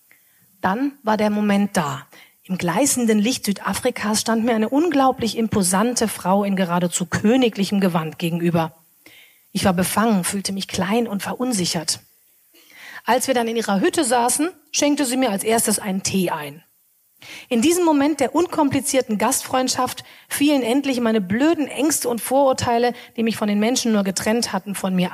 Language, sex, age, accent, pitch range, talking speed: German, female, 40-59, German, 195-260 Hz, 160 wpm